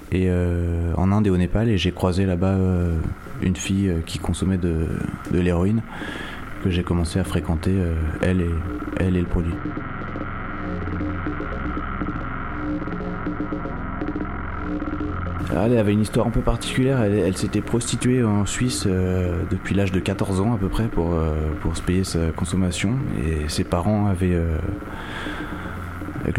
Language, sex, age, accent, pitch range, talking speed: French, male, 20-39, French, 90-105 Hz, 150 wpm